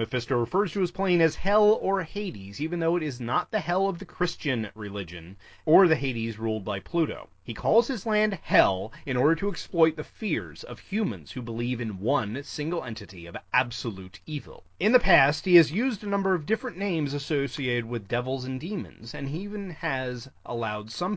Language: English